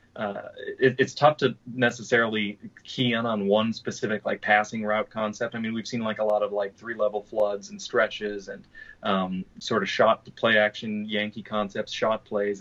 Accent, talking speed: American, 195 wpm